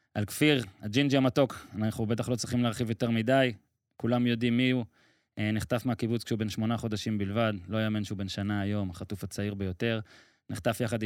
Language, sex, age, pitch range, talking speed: Hebrew, male, 20-39, 110-125 Hz, 180 wpm